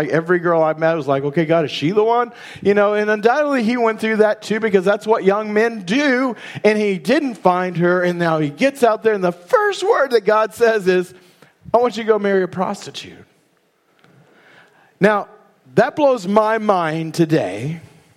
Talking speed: 200 wpm